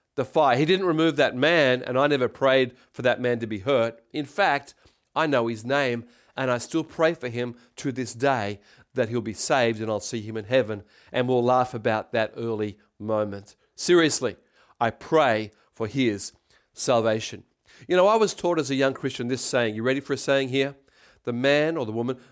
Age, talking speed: 40-59, 205 wpm